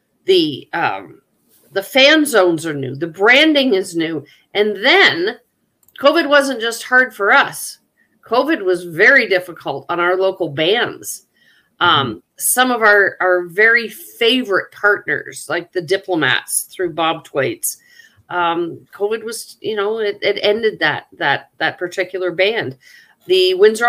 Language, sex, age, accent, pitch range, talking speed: English, female, 50-69, American, 175-255 Hz, 140 wpm